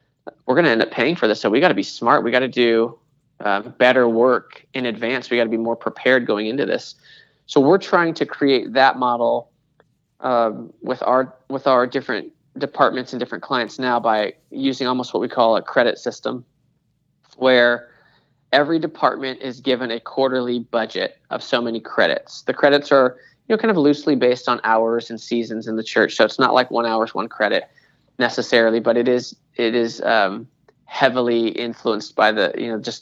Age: 20-39